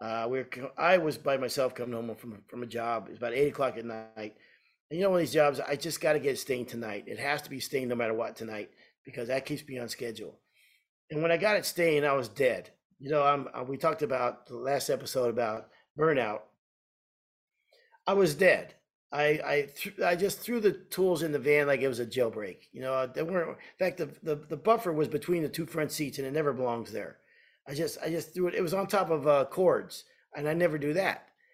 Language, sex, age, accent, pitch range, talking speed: English, male, 40-59, American, 135-185 Hz, 240 wpm